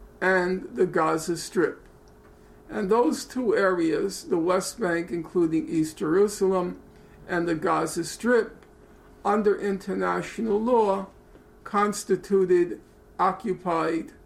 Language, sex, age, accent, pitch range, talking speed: English, male, 50-69, American, 160-195 Hz, 95 wpm